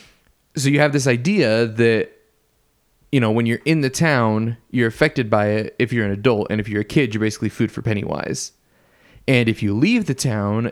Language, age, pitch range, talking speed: English, 20-39, 110-135 Hz, 205 wpm